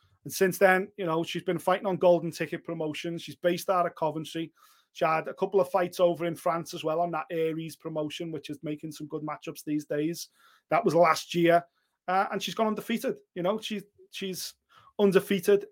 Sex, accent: male, British